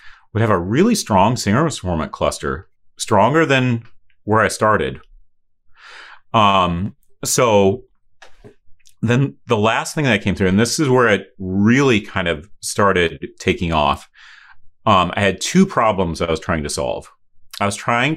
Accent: American